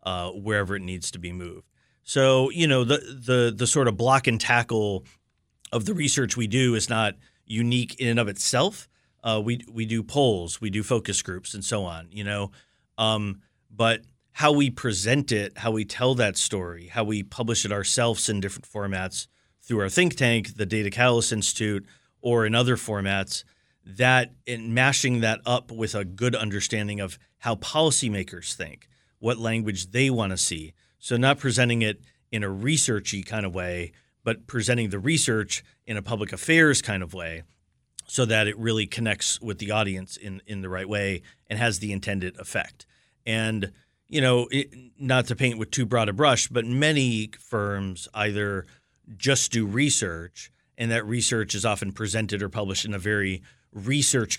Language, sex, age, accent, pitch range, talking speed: English, male, 30-49, American, 100-125 Hz, 180 wpm